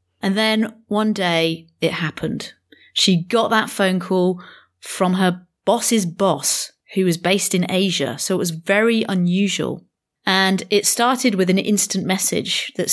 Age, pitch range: 30-49, 180-230 Hz